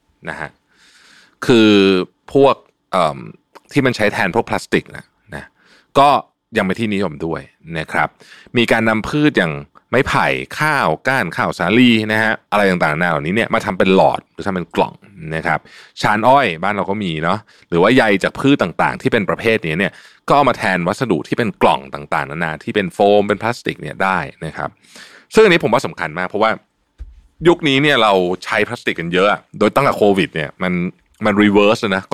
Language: Thai